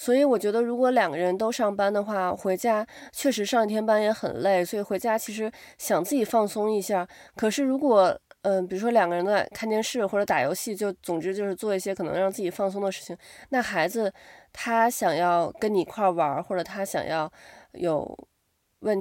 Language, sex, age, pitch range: Chinese, female, 20-39, 190-230 Hz